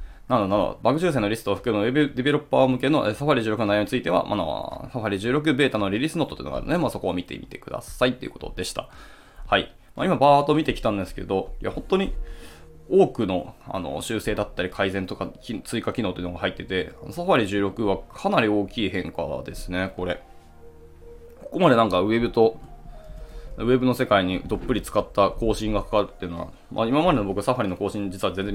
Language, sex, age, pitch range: Japanese, male, 20-39, 90-120 Hz